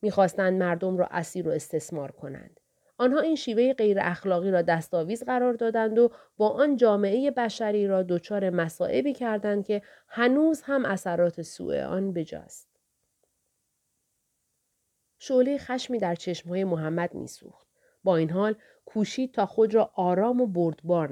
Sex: female